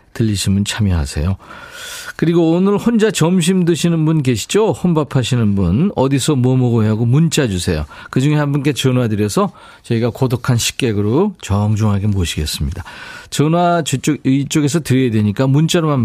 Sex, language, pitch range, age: male, Korean, 105-155 Hz, 40-59